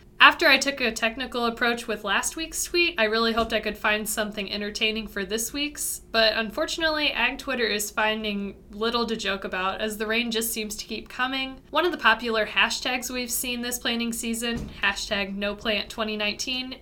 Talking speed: 185 wpm